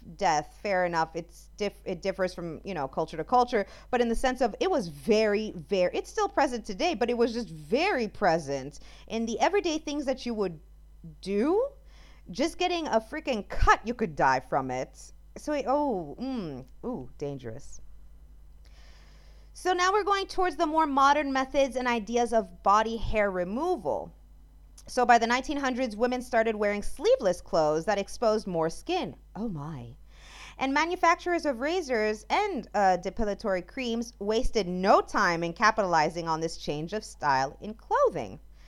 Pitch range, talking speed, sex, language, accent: 175-270 Hz, 165 wpm, female, English, American